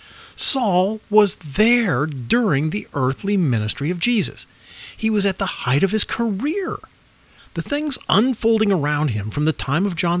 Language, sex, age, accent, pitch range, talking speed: English, male, 50-69, American, 135-210 Hz, 160 wpm